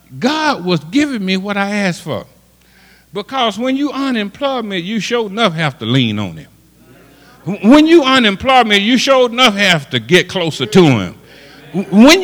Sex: male